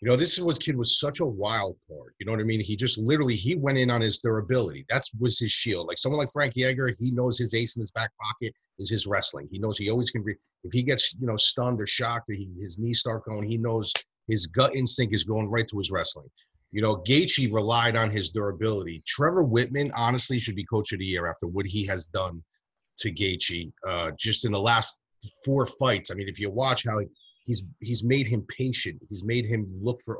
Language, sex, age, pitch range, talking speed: English, male, 30-49, 105-130 Hz, 240 wpm